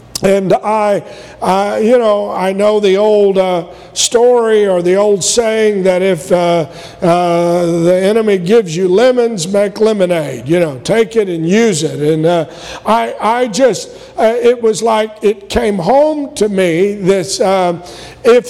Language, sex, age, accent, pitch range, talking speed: English, male, 50-69, American, 185-230 Hz, 160 wpm